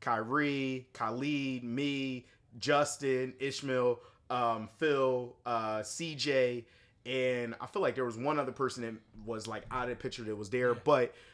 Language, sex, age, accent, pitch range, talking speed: English, male, 30-49, American, 110-130 Hz, 155 wpm